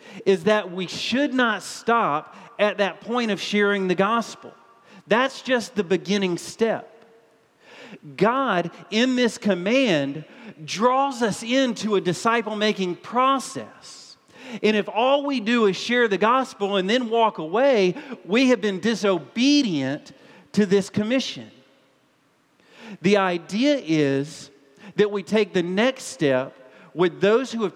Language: English